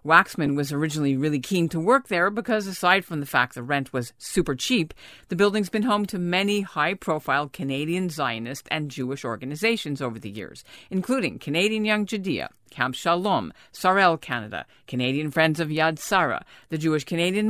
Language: English